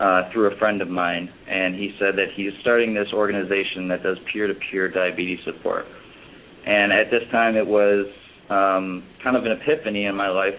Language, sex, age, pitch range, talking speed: English, male, 20-39, 95-105 Hz, 185 wpm